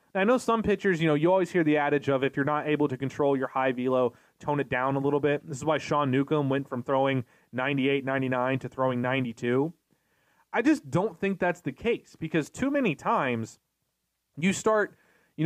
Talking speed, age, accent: 215 wpm, 20-39, American